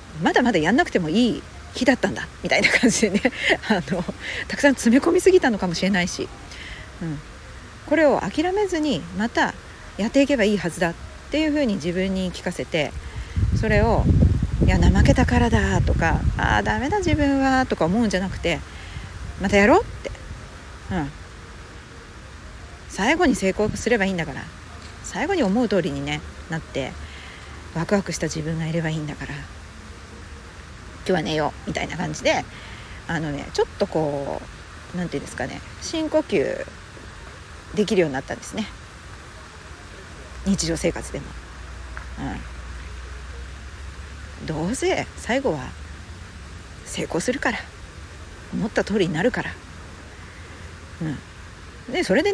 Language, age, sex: Japanese, 40-59, female